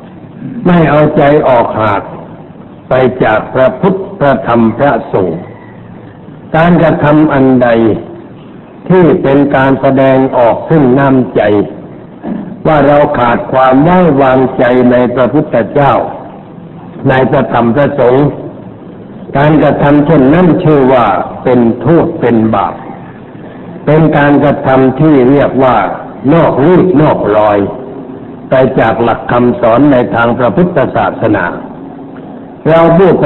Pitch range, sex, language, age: 125-155 Hz, male, Thai, 60-79